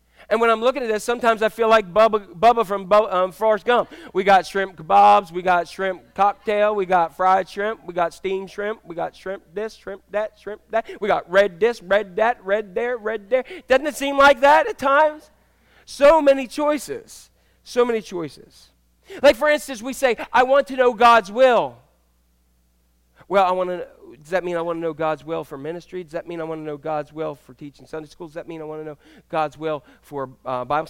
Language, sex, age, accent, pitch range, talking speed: English, male, 40-59, American, 145-225 Hz, 225 wpm